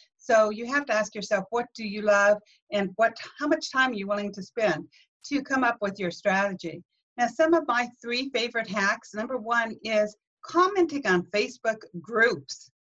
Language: English